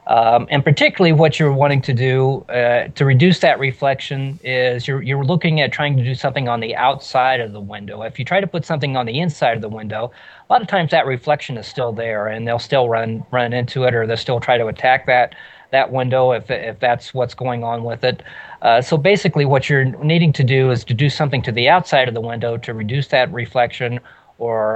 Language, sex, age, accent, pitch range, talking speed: English, male, 40-59, American, 115-140 Hz, 235 wpm